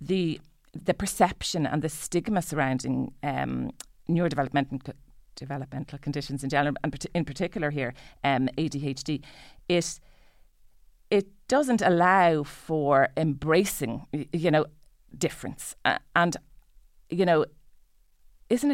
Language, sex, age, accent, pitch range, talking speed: English, female, 40-59, Irish, 140-175 Hz, 110 wpm